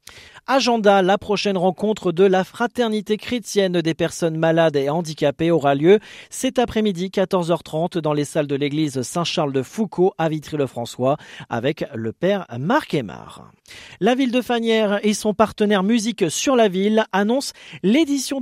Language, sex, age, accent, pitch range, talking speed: French, male, 40-59, French, 155-215 Hz, 145 wpm